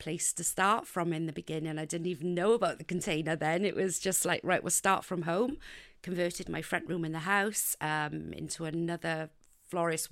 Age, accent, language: 40-59, British, English